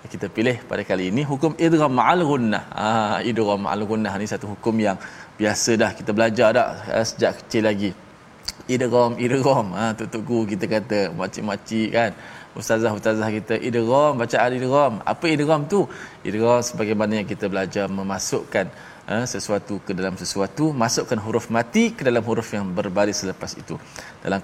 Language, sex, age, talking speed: Malayalam, male, 20-39, 160 wpm